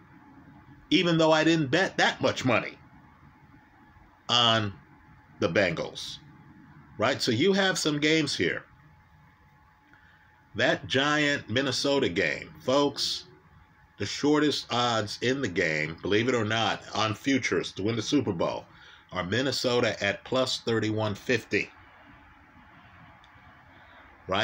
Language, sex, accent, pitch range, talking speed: English, male, American, 115-160 Hz, 110 wpm